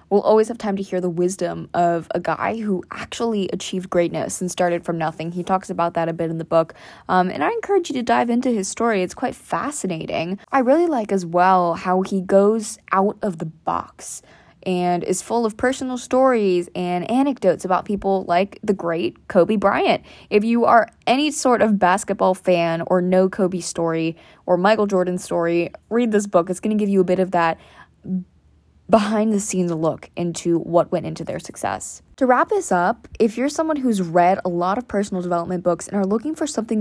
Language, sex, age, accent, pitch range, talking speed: English, female, 20-39, American, 175-225 Hz, 200 wpm